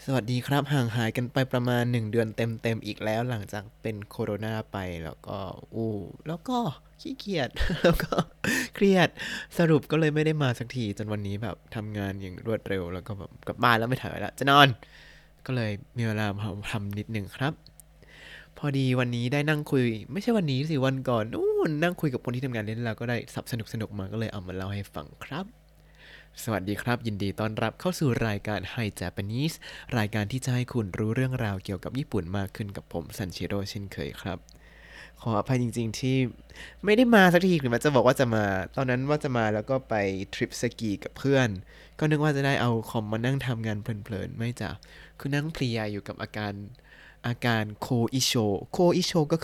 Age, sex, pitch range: 20-39, male, 105-135 Hz